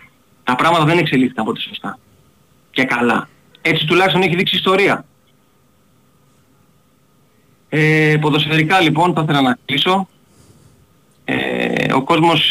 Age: 20-39